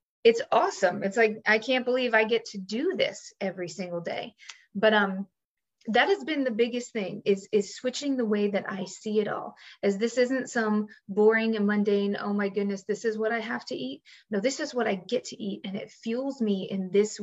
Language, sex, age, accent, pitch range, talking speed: English, female, 20-39, American, 200-235 Hz, 225 wpm